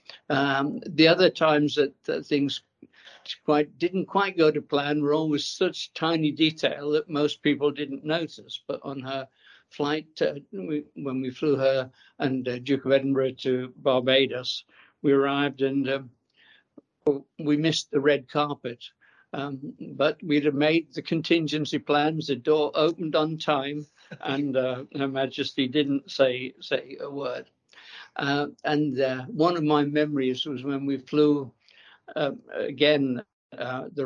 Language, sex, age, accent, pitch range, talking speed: English, male, 60-79, British, 135-150 Hz, 150 wpm